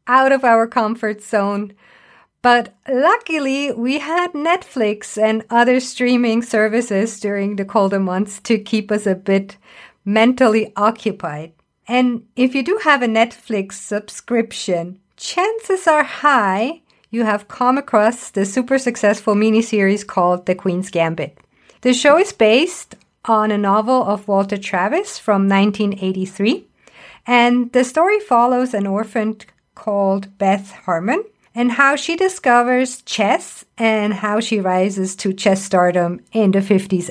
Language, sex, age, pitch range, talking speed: English, female, 50-69, 200-250 Hz, 135 wpm